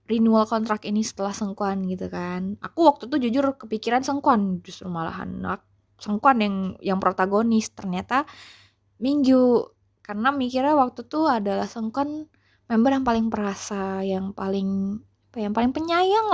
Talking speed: 135 wpm